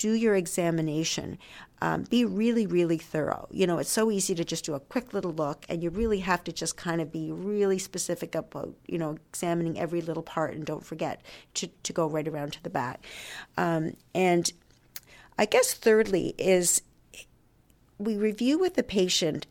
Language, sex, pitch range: English, female, 160-200 Hz